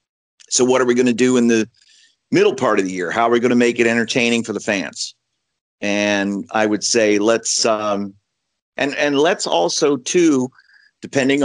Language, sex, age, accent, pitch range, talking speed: English, male, 50-69, American, 110-125 Hz, 195 wpm